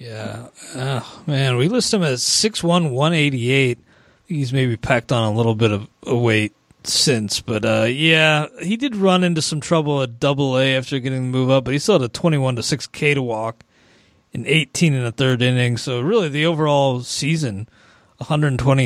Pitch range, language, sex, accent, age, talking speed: 115-155 Hz, English, male, American, 30-49, 210 wpm